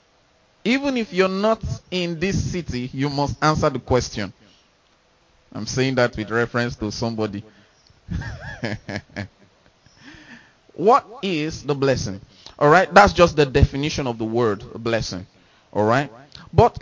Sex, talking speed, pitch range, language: male, 130 wpm, 120-155 Hz, English